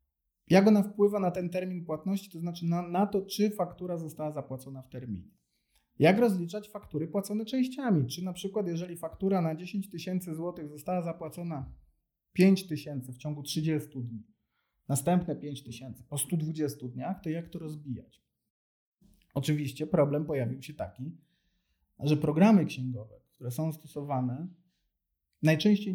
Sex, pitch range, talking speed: male, 140-180 Hz, 145 wpm